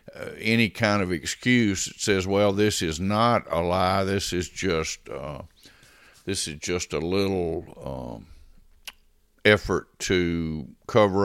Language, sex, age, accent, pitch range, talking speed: English, male, 60-79, American, 85-100 Hz, 140 wpm